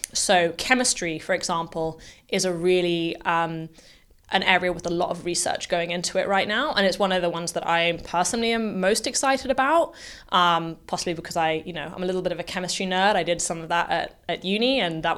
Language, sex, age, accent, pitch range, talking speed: English, female, 20-39, British, 175-210 Hz, 225 wpm